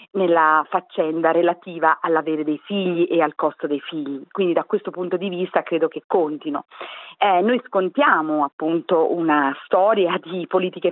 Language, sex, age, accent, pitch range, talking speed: Italian, female, 40-59, native, 170-235 Hz, 155 wpm